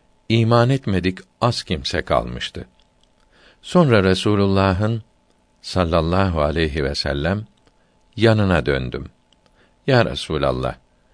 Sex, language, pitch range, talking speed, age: male, Turkish, 80-115 Hz, 80 wpm, 60-79